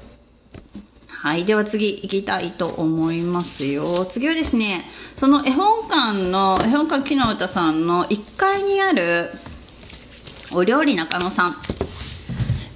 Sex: female